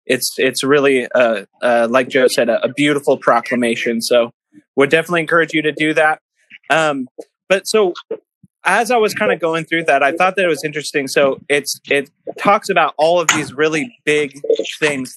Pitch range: 135-165 Hz